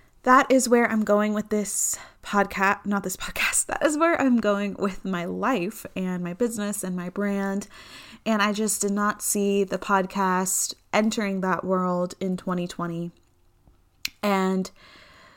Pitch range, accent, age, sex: 180-205 Hz, American, 20-39, female